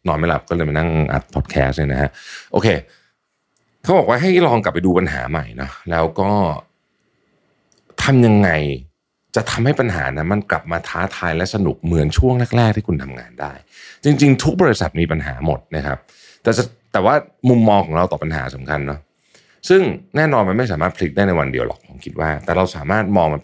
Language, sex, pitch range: Thai, male, 75-105 Hz